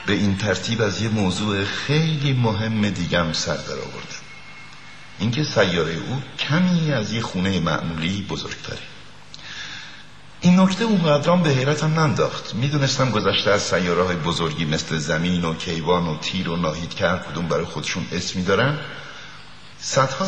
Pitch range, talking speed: 90-140 Hz, 140 wpm